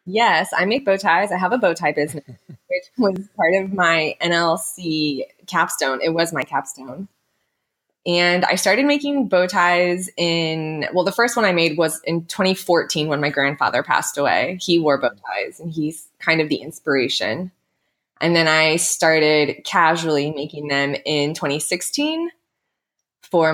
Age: 20-39